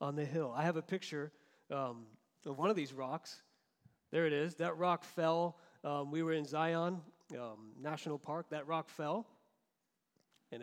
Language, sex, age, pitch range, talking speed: English, male, 40-59, 145-190 Hz, 175 wpm